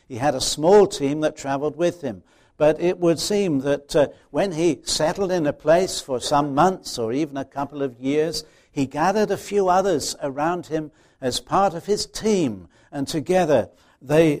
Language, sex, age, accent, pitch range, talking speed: English, male, 60-79, British, 115-155 Hz, 185 wpm